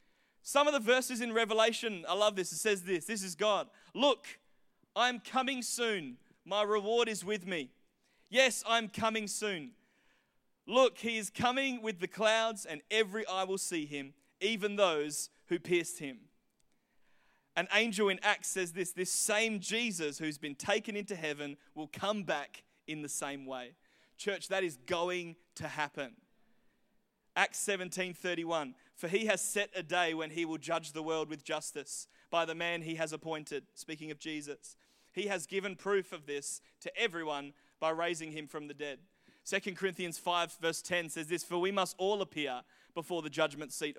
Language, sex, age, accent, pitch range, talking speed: English, male, 30-49, Australian, 155-210 Hz, 175 wpm